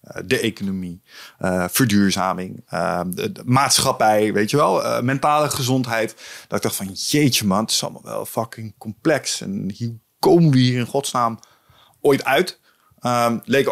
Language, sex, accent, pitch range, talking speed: Dutch, male, Dutch, 115-170 Hz, 155 wpm